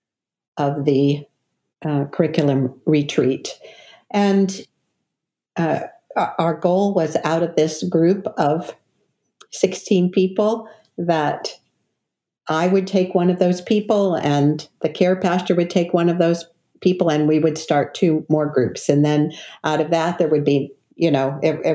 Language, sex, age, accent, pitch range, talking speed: English, female, 50-69, American, 160-205 Hz, 145 wpm